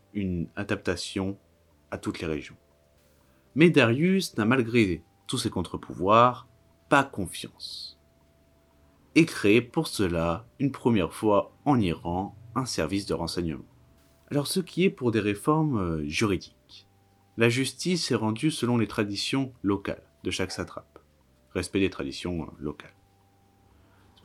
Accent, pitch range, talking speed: French, 80-115 Hz, 130 wpm